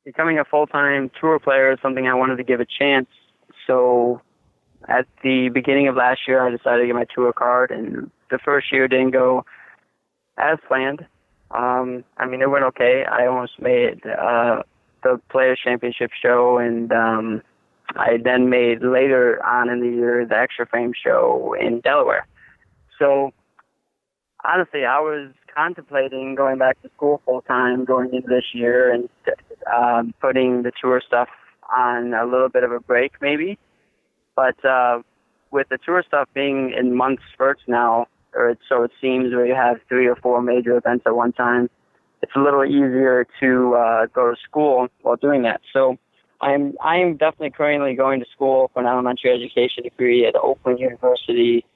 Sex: male